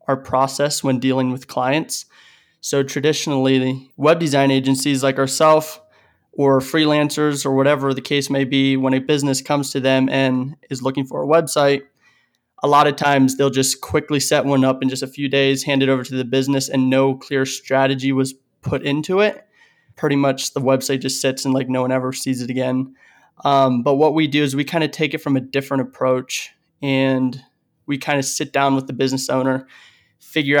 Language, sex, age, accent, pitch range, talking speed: English, male, 20-39, American, 130-145 Hz, 200 wpm